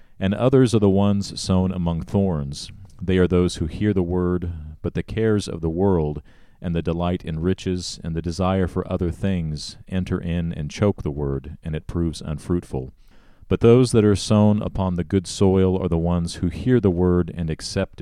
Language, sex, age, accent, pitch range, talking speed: English, male, 40-59, American, 80-100 Hz, 200 wpm